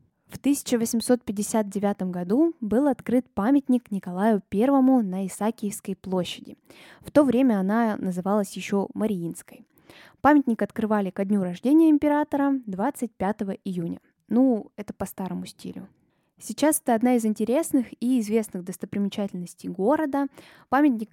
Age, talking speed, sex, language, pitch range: 10-29, 115 wpm, female, Russian, 195-250 Hz